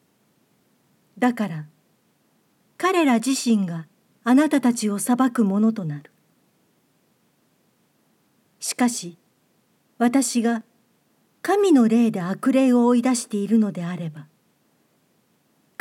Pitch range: 195-260 Hz